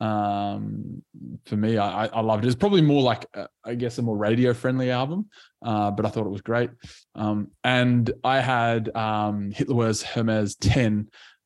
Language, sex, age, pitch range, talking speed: English, male, 20-39, 105-120 Hz, 180 wpm